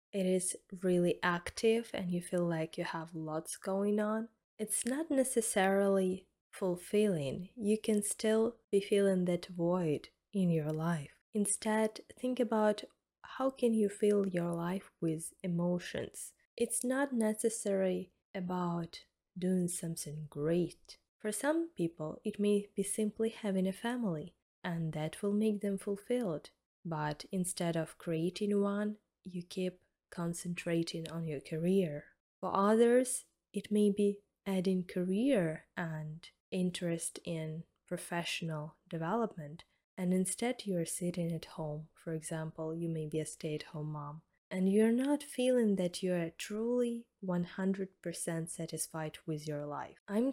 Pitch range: 170-215 Hz